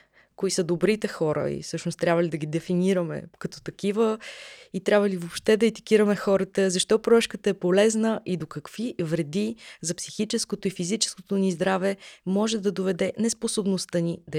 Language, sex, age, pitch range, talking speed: Bulgarian, female, 20-39, 175-215 Hz, 165 wpm